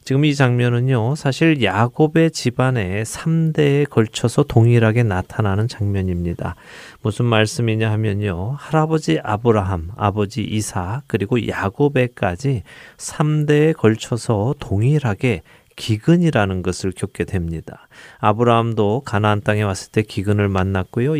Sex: male